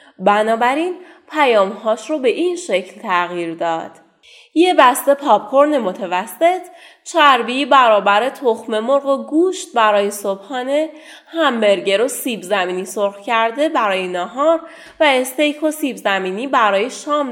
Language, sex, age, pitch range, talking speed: Persian, female, 30-49, 205-315 Hz, 120 wpm